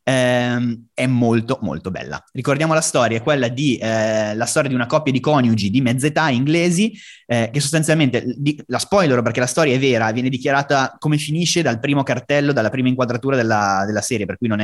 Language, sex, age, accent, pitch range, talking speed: Italian, male, 30-49, native, 120-155 Hz, 200 wpm